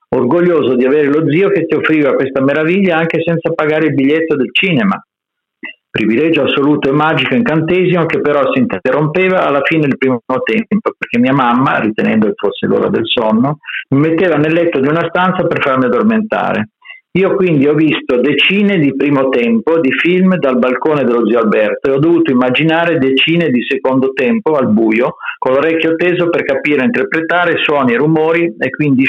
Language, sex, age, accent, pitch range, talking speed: Italian, male, 50-69, native, 135-180 Hz, 180 wpm